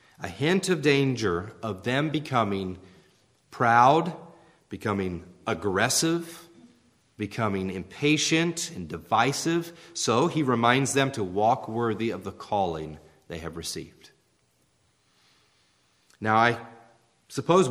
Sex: male